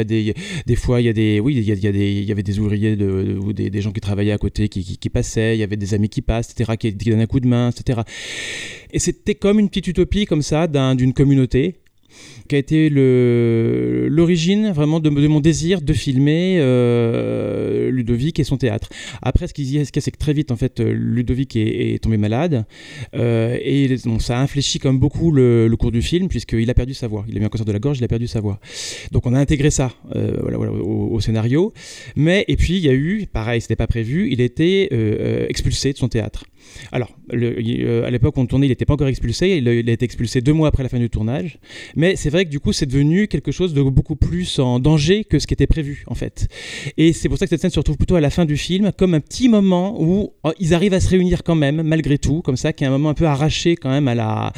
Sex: male